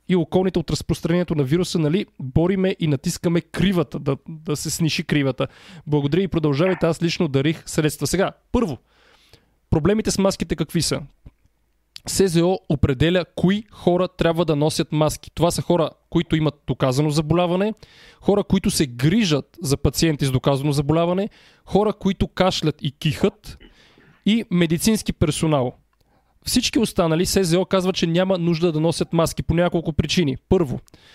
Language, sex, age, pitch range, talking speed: Bulgarian, male, 20-39, 150-180 Hz, 145 wpm